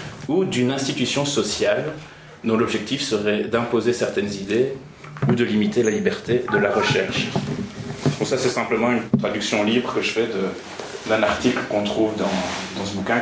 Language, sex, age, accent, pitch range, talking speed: French, male, 30-49, French, 105-135 Hz, 170 wpm